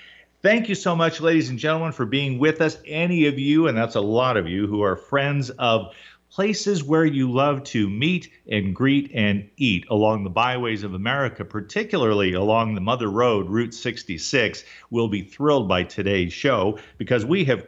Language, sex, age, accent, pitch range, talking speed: English, male, 50-69, American, 105-140 Hz, 185 wpm